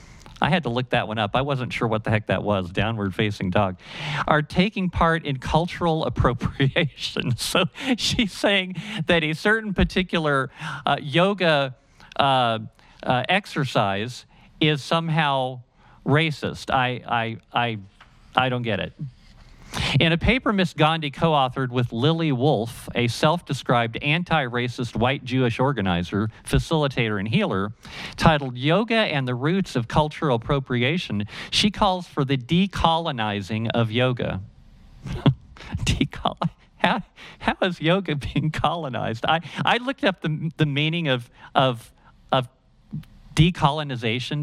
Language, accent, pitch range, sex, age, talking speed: English, American, 120-160 Hz, male, 50-69, 130 wpm